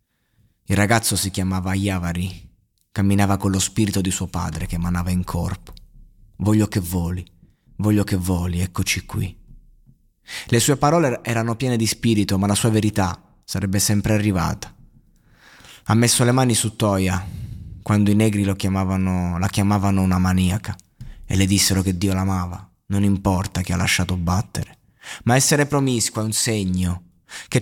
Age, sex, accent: 20-39, male, native